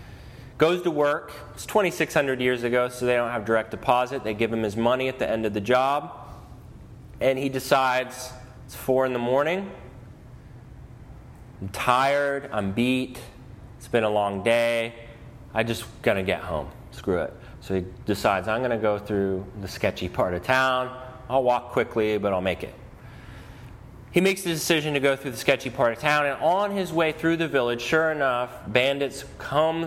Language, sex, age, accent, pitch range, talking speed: English, male, 30-49, American, 110-135 Hz, 185 wpm